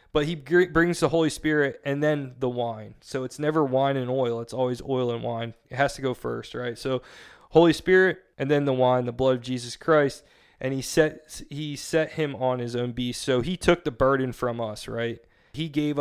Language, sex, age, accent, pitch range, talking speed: English, male, 20-39, American, 125-145 Hz, 220 wpm